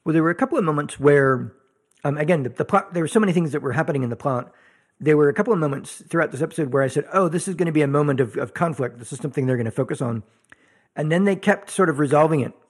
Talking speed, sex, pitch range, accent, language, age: 300 wpm, male, 125-155 Hz, American, English, 40-59